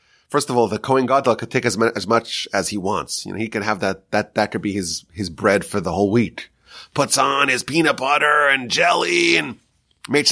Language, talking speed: English, 235 wpm